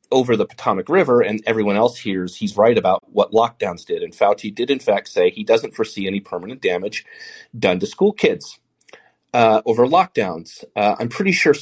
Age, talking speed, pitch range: 30-49, 190 wpm, 100-150 Hz